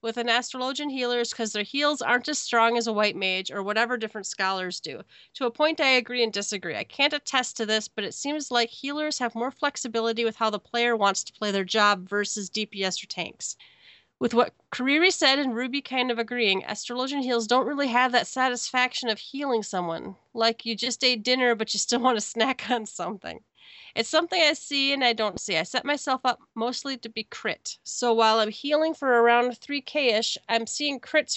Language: English